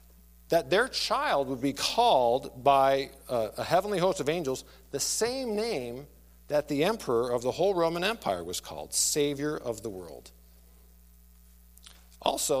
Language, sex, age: English, male, 50-69